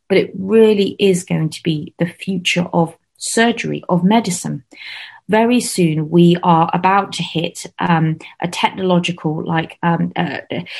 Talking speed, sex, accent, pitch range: 145 wpm, female, British, 170-200 Hz